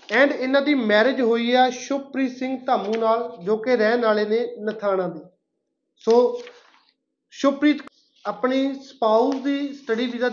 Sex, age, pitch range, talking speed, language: male, 30-49, 225-270 Hz, 140 wpm, Punjabi